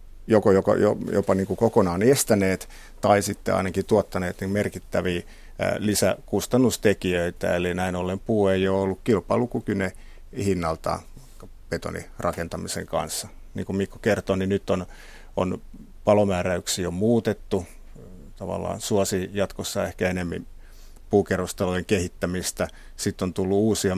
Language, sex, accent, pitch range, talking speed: Finnish, male, native, 85-100 Hz, 120 wpm